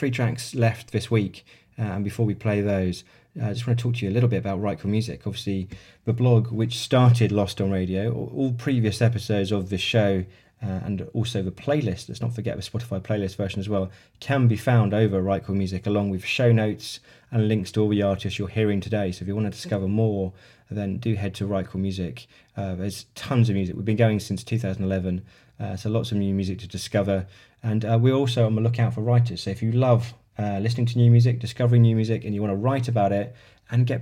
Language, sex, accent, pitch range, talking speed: English, male, British, 100-120 Hz, 235 wpm